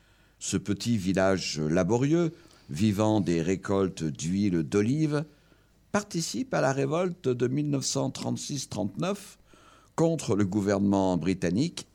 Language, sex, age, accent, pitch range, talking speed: French, male, 50-69, French, 95-135 Hz, 95 wpm